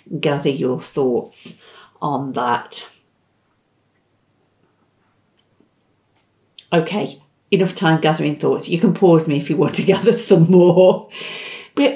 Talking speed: 110 wpm